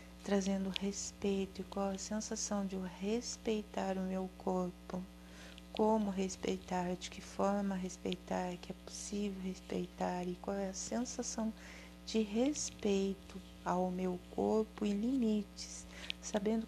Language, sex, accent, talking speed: Portuguese, female, Brazilian, 125 wpm